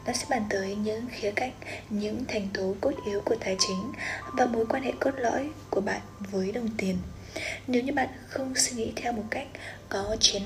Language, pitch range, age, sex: Vietnamese, 205-240 Hz, 20-39, female